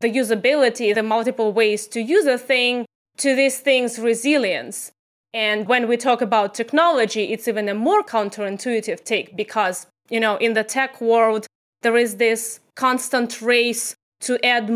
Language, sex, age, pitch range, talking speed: English, female, 20-39, 220-260 Hz, 160 wpm